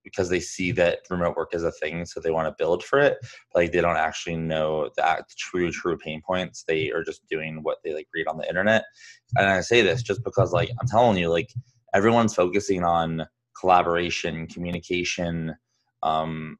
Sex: male